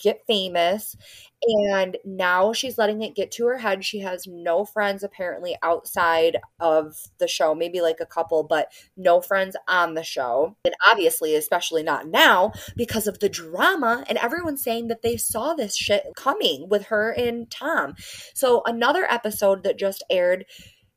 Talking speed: 165 wpm